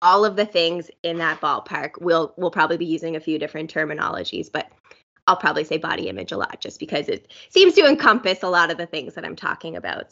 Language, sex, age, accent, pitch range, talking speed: English, female, 20-39, American, 175-255 Hz, 230 wpm